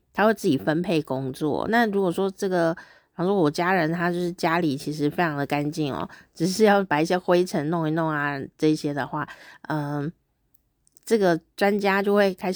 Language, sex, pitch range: Chinese, female, 160-215 Hz